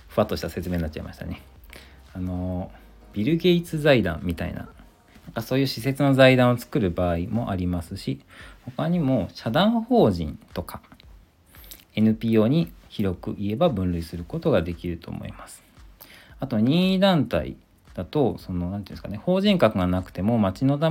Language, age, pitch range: Japanese, 40-59, 90-130 Hz